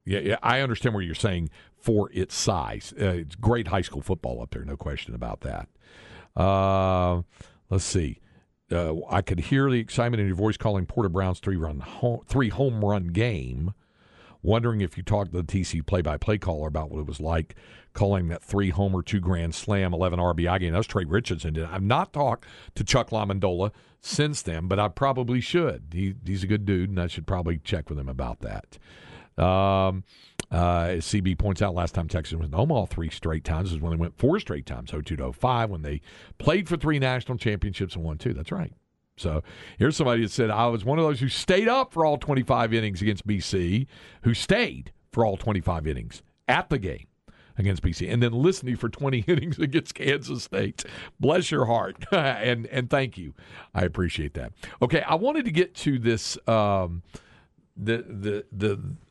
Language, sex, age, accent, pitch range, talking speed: English, male, 50-69, American, 85-115 Hz, 200 wpm